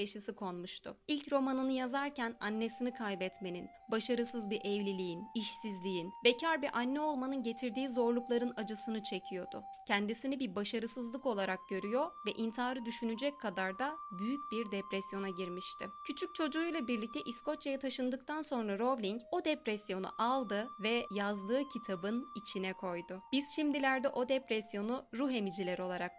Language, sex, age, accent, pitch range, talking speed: Turkish, female, 30-49, native, 205-270 Hz, 125 wpm